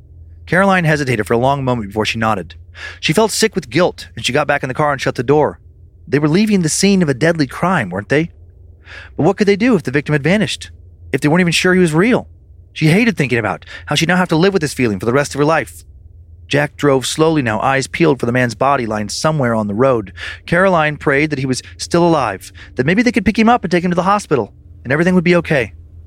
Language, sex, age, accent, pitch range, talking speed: English, male, 30-49, American, 105-170 Hz, 260 wpm